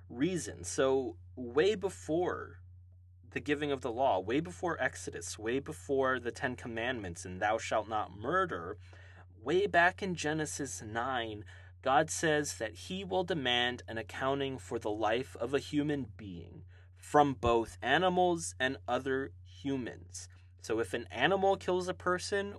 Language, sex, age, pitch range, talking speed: English, male, 30-49, 90-135 Hz, 145 wpm